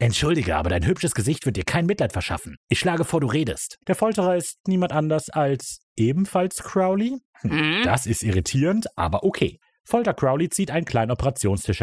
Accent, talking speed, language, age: German, 175 wpm, German, 30-49